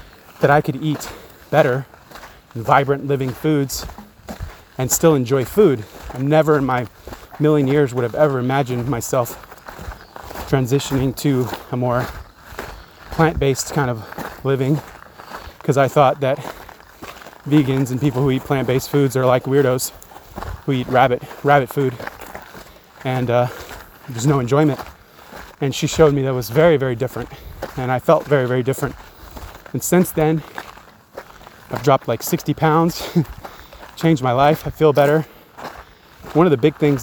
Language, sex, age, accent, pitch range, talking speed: English, male, 30-49, American, 125-150 Hz, 145 wpm